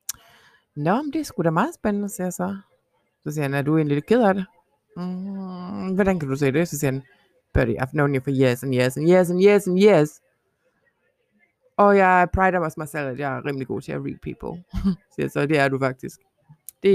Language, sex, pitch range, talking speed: Danish, female, 150-195 Hz, 250 wpm